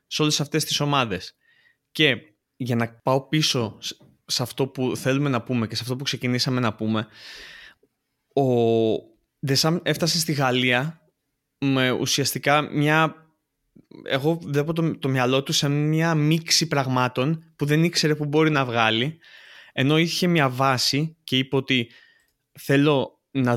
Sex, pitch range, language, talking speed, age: male, 125-155 Hz, Greek, 145 wpm, 20-39